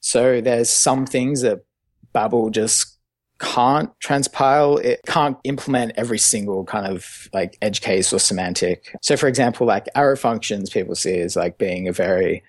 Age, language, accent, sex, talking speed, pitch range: 20-39, English, Australian, male, 165 wpm, 100-135 Hz